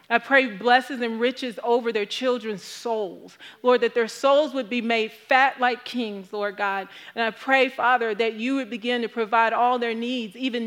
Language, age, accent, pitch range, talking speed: English, 40-59, American, 205-245 Hz, 195 wpm